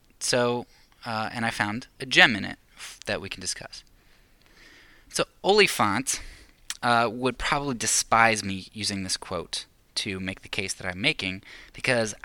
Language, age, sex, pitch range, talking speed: English, 10-29, male, 95-120 Hz, 150 wpm